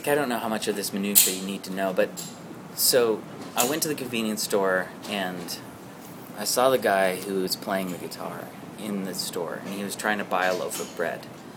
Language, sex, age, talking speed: English, male, 30-49, 230 wpm